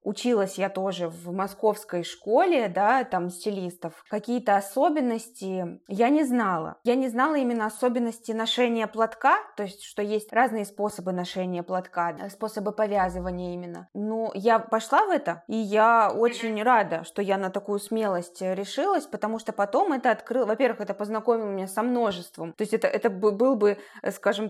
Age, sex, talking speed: 20-39, female, 160 wpm